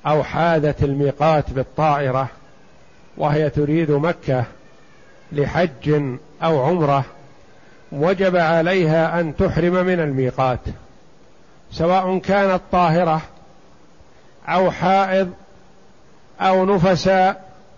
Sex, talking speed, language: male, 80 wpm, Arabic